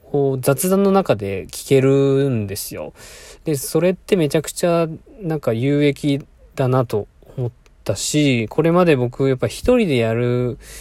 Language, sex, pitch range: Japanese, male, 115-150 Hz